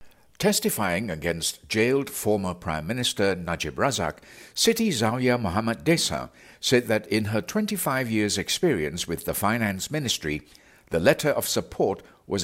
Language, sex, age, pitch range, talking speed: English, male, 60-79, 90-135 Hz, 135 wpm